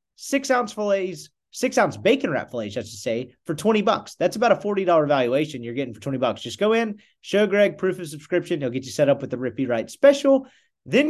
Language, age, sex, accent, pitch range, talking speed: English, 30-49, male, American, 135-195 Hz, 220 wpm